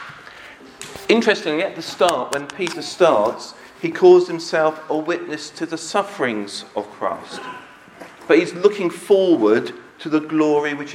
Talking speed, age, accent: 135 wpm, 40-59, British